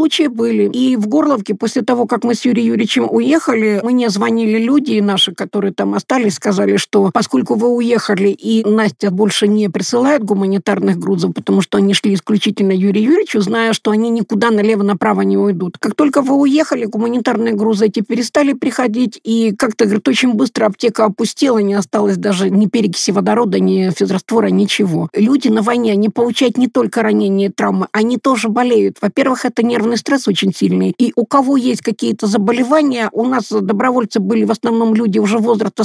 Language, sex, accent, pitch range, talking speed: Russian, female, native, 210-250 Hz, 175 wpm